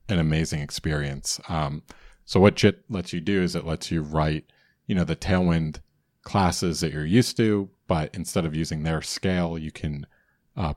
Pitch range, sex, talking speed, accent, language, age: 75-85 Hz, male, 185 wpm, American, English, 40-59